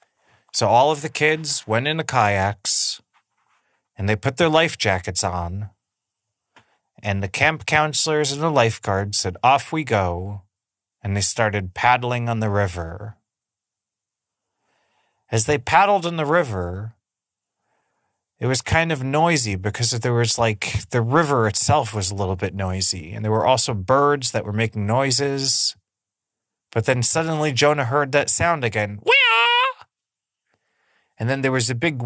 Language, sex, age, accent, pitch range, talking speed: English, male, 30-49, American, 105-145 Hz, 150 wpm